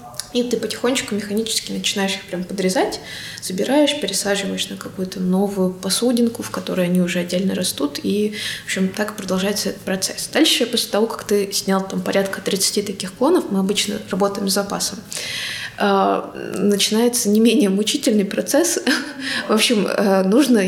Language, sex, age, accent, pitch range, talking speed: Russian, female, 20-39, native, 190-220 Hz, 150 wpm